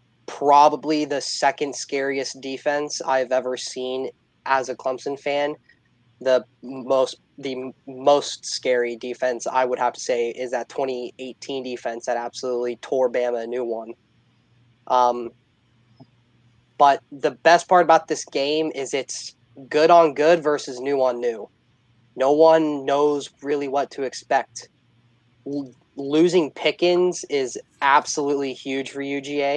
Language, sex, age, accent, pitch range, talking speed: English, male, 20-39, American, 125-145 Hz, 130 wpm